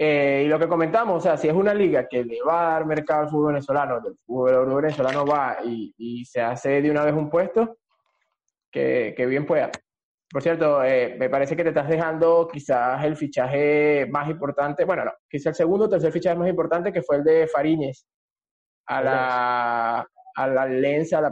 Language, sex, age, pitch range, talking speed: Spanish, male, 20-39, 145-200 Hz, 205 wpm